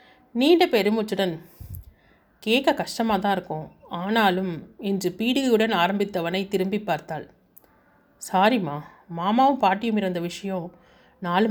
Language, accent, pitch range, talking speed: Tamil, native, 185-230 Hz, 95 wpm